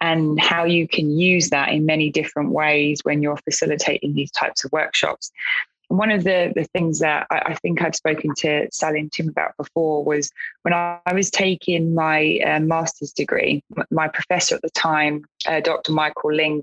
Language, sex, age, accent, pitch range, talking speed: English, female, 20-39, British, 155-180 Hz, 190 wpm